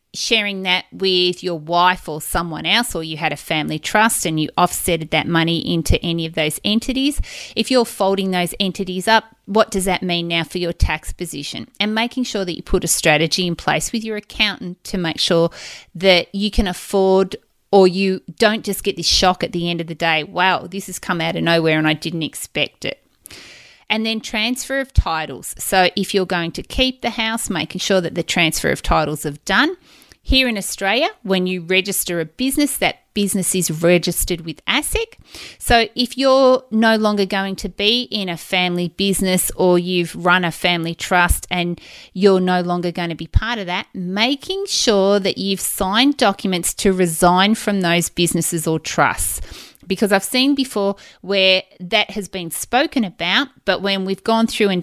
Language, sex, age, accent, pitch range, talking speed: English, female, 30-49, Australian, 175-215 Hz, 195 wpm